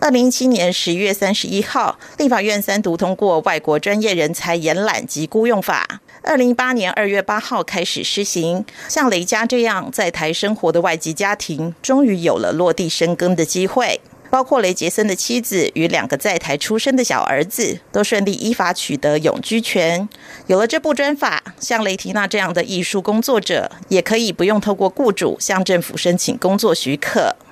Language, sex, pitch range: Russian, female, 170-230 Hz